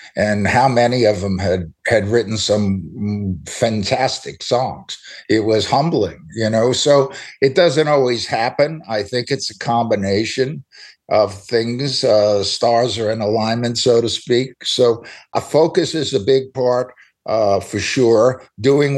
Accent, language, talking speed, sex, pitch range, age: American, English, 150 wpm, male, 100-125 Hz, 60-79